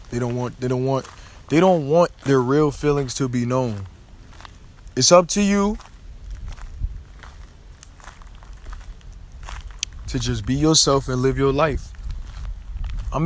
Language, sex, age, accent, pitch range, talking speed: English, male, 20-39, American, 100-135 Hz, 125 wpm